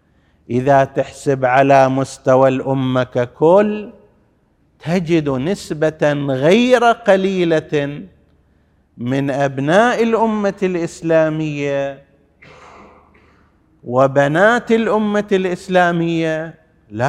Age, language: 50-69, Arabic